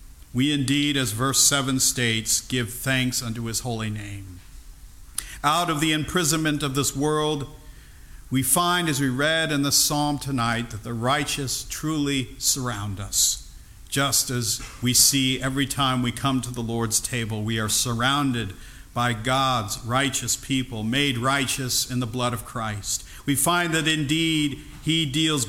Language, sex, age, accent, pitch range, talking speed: English, male, 50-69, American, 110-145 Hz, 155 wpm